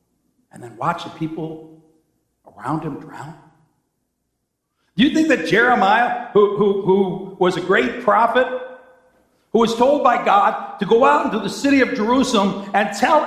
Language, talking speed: English, 155 wpm